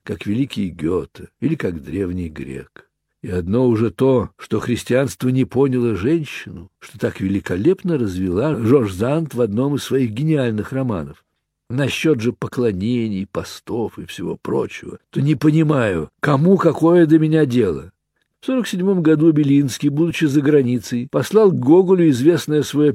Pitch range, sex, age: 115-165 Hz, male, 60-79